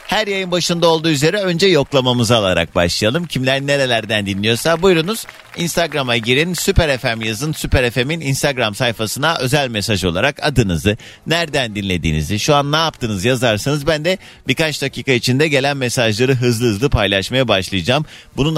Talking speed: 145 wpm